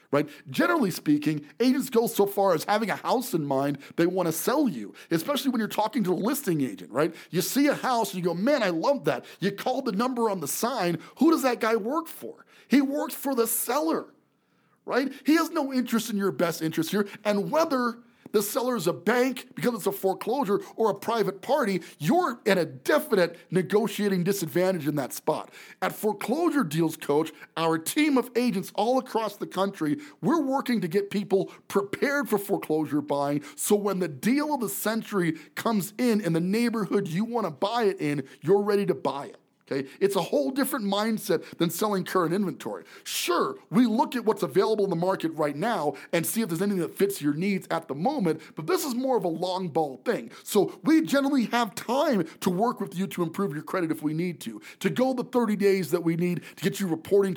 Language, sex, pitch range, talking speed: English, male, 170-240 Hz, 215 wpm